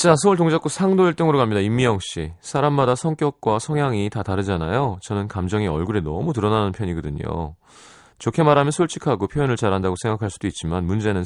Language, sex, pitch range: Korean, male, 90-135 Hz